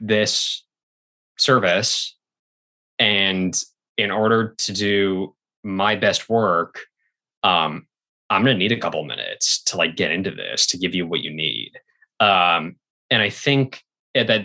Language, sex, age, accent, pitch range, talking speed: English, male, 20-39, American, 90-125 Hz, 135 wpm